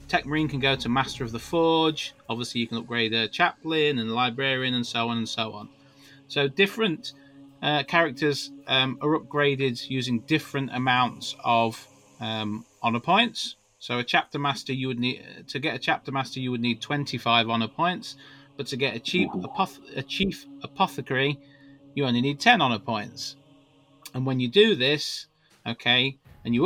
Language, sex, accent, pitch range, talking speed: English, male, British, 115-145 Hz, 180 wpm